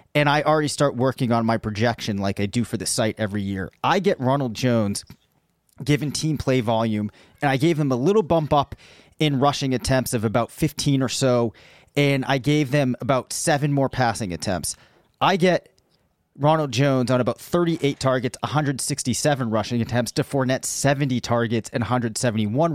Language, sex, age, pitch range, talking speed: English, male, 30-49, 115-145 Hz, 175 wpm